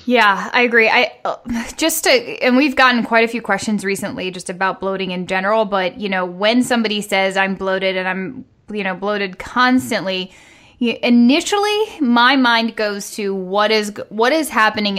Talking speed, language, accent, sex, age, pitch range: 170 wpm, English, American, female, 10-29, 195-235 Hz